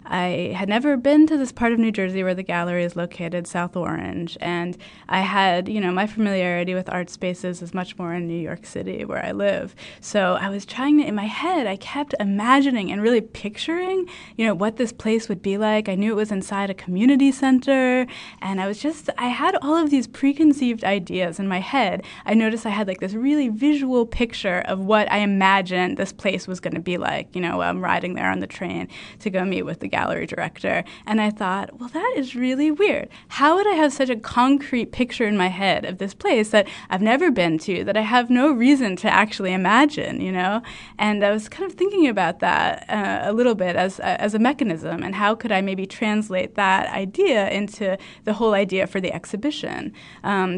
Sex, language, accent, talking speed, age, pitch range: female, English, American, 220 wpm, 20-39, 185-245 Hz